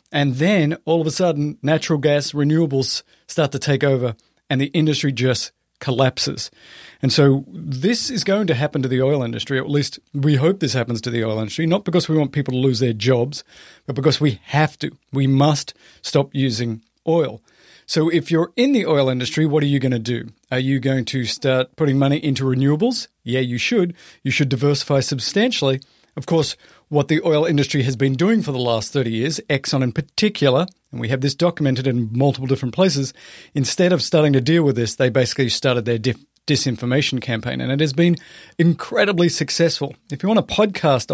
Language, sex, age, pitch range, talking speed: English, male, 40-59, 130-160 Hz, 200 wpm